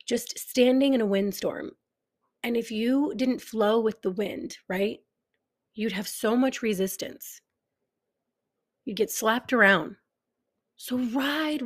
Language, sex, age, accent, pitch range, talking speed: English, female, 30-49, American, 205-255 Hz, 130 wpm